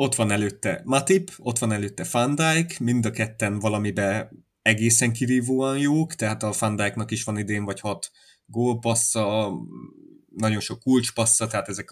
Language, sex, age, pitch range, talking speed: English, male, 20-39, 100-115 Hz, 145 wpm